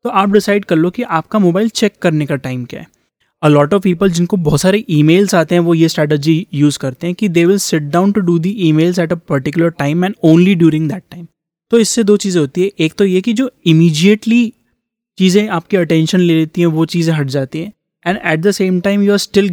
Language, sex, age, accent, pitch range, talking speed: English, male, 20-39, Indian, 155-195 Hz, 240 wpm